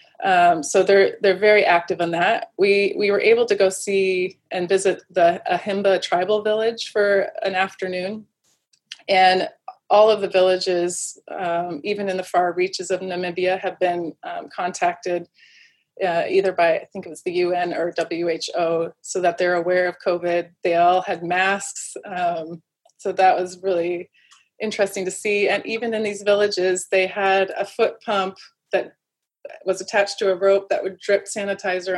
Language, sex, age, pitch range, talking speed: English, female, 20-39, 180-200 Hz, 170 wpm